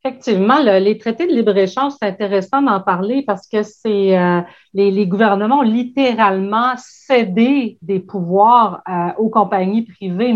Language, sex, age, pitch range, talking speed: French, female, 40-59, 190-235 Hz, 150 wpm